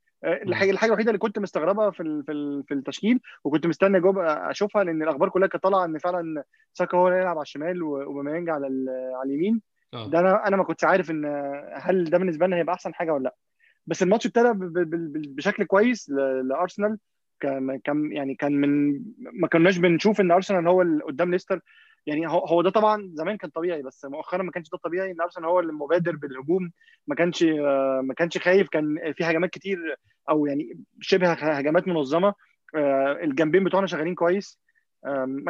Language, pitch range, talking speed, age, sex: Arabic, 150-195 Hz, 170 wpm, 20-39, male